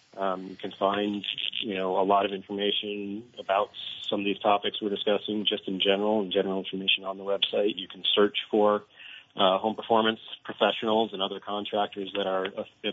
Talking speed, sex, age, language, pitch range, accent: 185 wpm, male, 30-49, English, 95-105 Hz, American